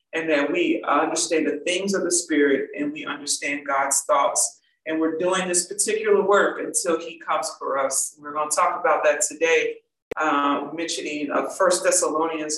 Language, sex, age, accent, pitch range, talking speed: English, female, 40-59, American, 150-180 Hz, 180 wpm